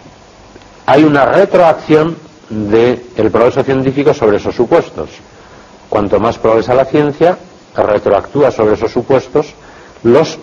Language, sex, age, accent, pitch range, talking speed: Spanish, male, 60-79, Spanish, 95-135 Hz, 110 wpm